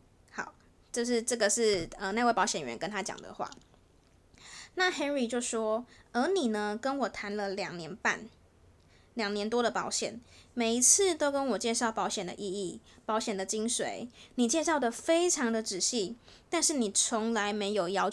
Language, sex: Chinese, female